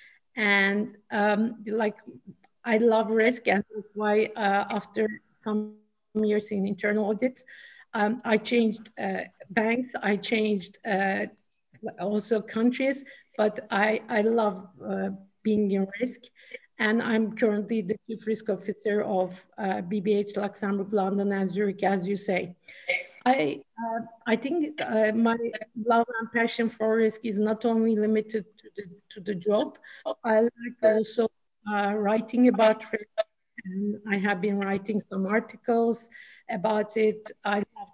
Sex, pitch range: female, 200-225 Hz